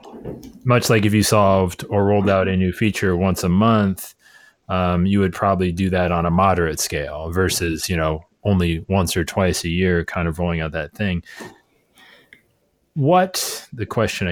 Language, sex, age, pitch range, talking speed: English, male, 20-39, 85-105 Hz, 175 wpm